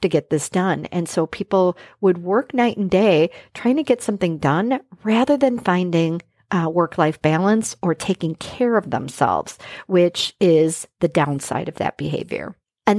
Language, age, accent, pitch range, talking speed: English, 50-69, American, 165-200 Hz, 165 wpm